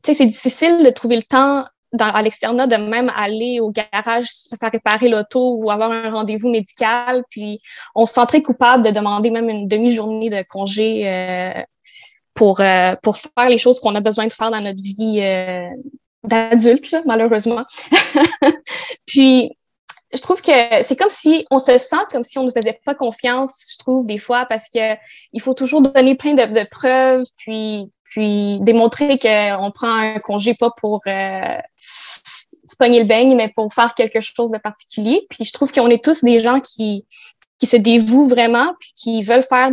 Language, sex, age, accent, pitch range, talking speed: French, female, 20-39, Canadian, 215-260 Hz, 190 wpm